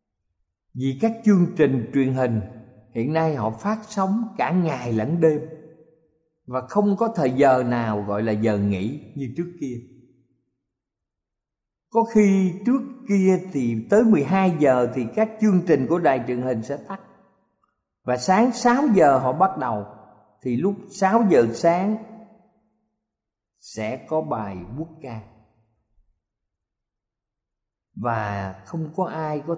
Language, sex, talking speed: Vietnamese, male, 140 wpm